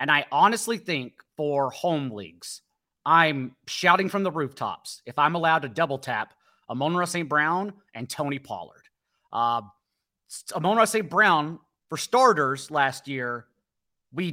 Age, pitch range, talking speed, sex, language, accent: 30-49, 140-185 Hz, 140 wpm, male, English, American